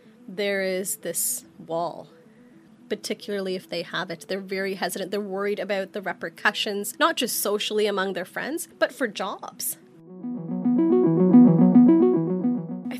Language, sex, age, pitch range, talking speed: English, female, 20-39, 185-220 Hz, 125 wpm